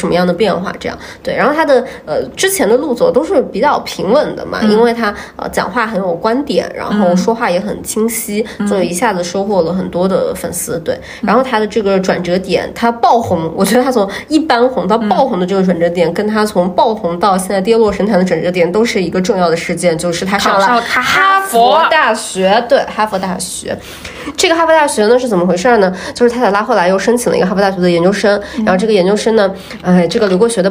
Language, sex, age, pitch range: Chinese, female, 20-39, 180-230 Hz